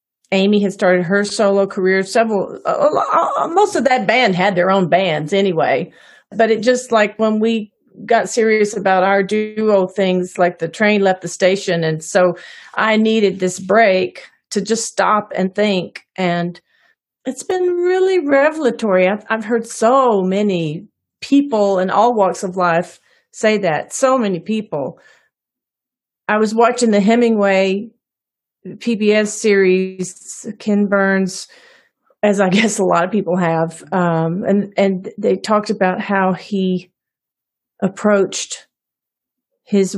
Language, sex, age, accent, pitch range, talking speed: English, female, 40-59, American, 185-225 Hz, 145 wpm